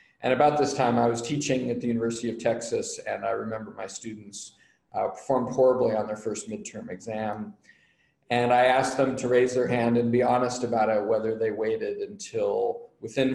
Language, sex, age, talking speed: English, male, 40-59, 195 wpm